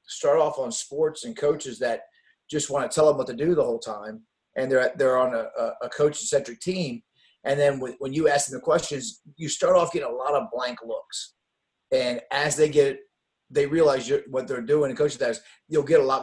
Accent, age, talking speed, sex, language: American, 30-49, 230 wpm, male, English